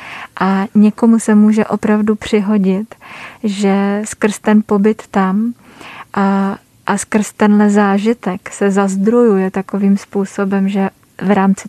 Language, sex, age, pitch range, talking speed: Czech, female, 20-39, 195-210 Hz, 120 wpm